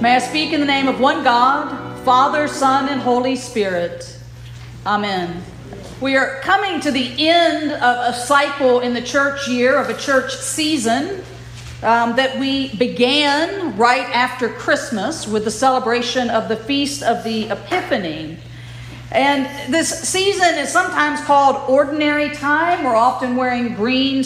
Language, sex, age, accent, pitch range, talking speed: English, female, 50-69, American, 225-280 Hz, 150 wpm